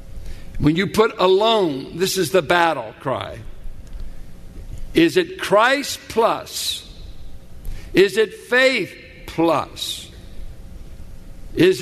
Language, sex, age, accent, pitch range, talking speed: English, male, 60-79, American, 165-230 Hz, 90 wpm